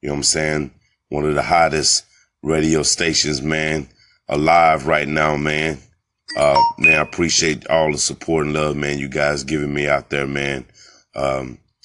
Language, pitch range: English, 65-75 Hz